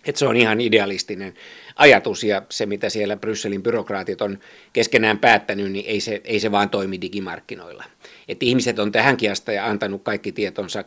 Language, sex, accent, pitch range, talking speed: Finnish, male, native, 105-135 Hz, 175 wpm